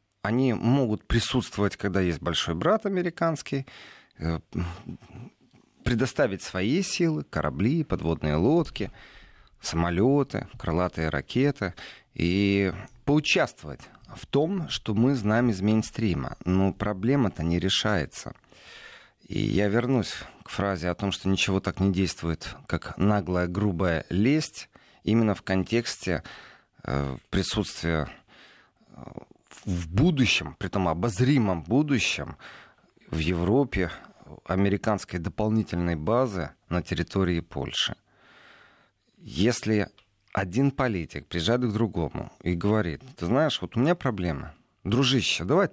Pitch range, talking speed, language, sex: 90-125 Hz, 105 wpm, Russian, male